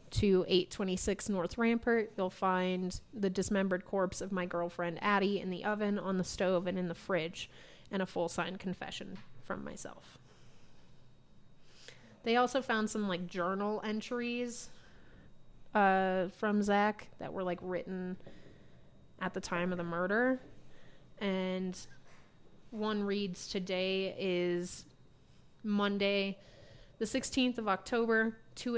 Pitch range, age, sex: 180-210 Hz, 30-49, female